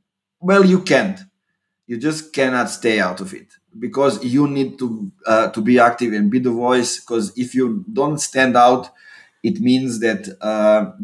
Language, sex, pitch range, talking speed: English, male, 115-135 Hz, 175 wpm